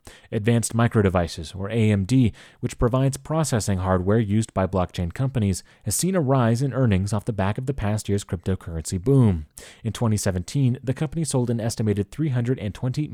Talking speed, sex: 165 wpm, male